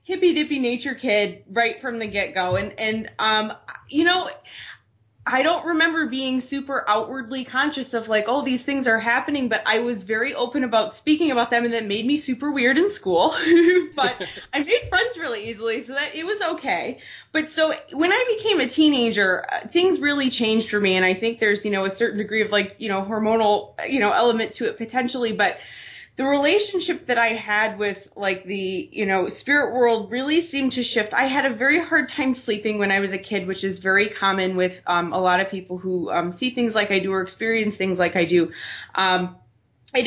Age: 20-39